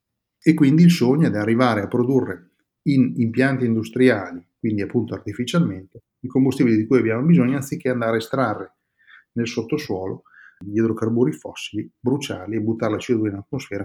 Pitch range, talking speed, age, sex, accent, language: 105-130 Hz, 160 wpm, 30-49, male, native, Italian